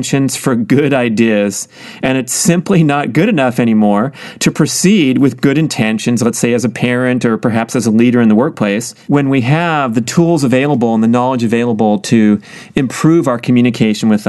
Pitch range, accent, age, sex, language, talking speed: 120-160 Hz, American, 40-59, male, English, 190 wpm